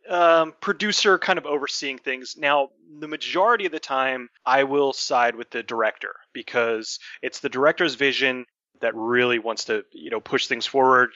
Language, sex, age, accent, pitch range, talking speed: English, male, 30-49, American, 115-140 Hz, 170 wpm